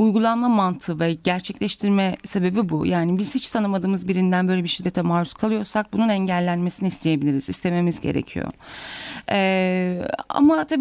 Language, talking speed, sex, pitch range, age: Turkish, 135 wpm, female, 190-245 Hz, 30-49